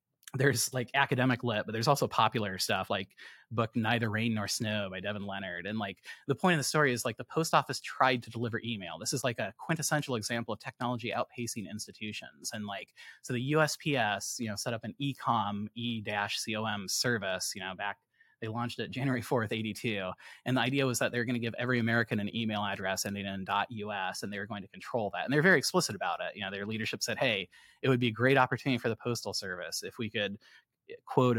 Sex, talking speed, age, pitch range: male, 225 wpm, 20-39, 105-130 Hz